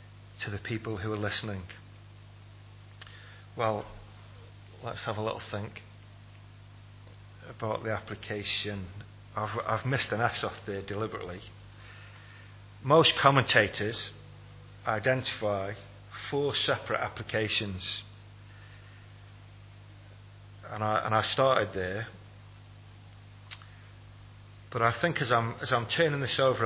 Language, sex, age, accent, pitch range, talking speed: English, male, 40-59, British, 100-115 Hz, 105 wpm